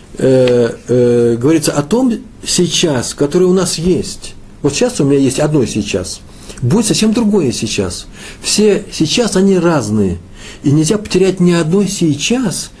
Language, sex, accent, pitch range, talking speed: Russian, male, native, 100-150 Hz, 145 wpm